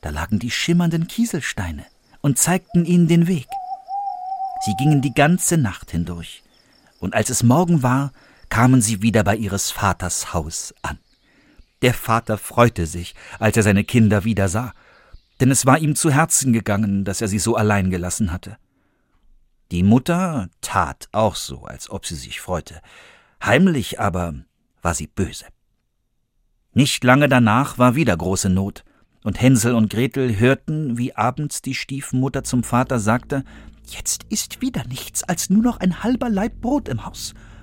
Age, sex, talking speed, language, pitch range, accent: 50-69, male, 160 wpm, German, 100-150 Hz, German